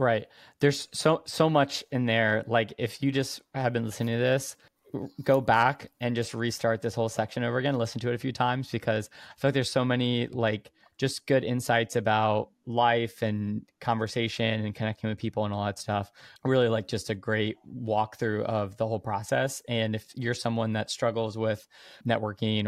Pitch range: 110-125 Hz